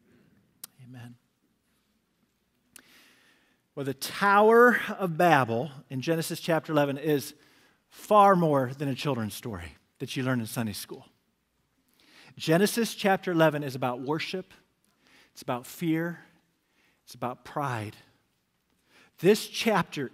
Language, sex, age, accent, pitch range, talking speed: English, male, 50-69, American, 140-195 Hz, 110 wpm